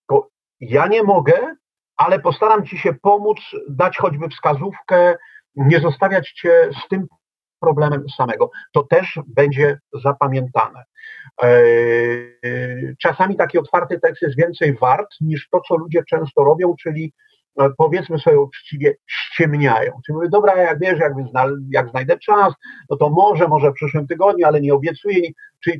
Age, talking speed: 40-59, 135 wpm